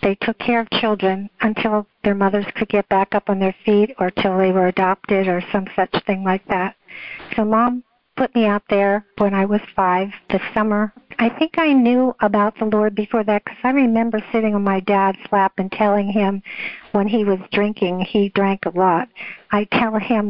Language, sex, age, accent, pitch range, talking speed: English, female, 50-69, American, 195-225 Hz, 205 wpm